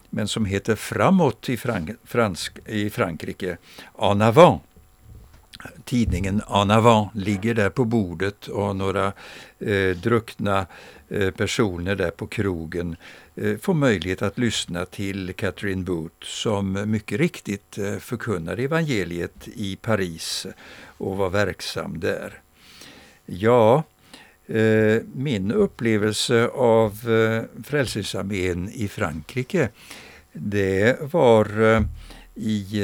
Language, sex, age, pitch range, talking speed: Swedish, male, 60-79, 95-115 Hz, 95 wpm